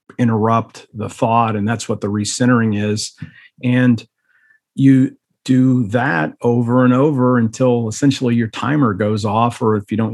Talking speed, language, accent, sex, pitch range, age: 155 wpm, English, American, male, 110-130 Hz, 40-59